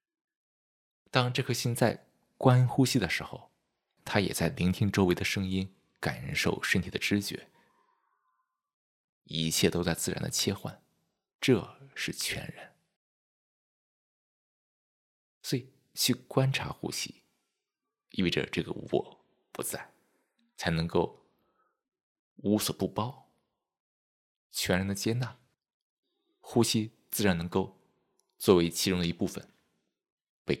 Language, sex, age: Chinese, male, 20-39